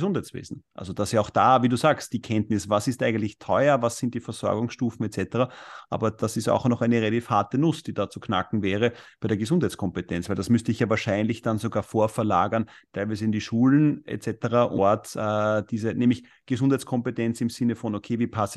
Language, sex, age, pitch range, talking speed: German, male, 30-49, 110-125 Hz, 200 wpm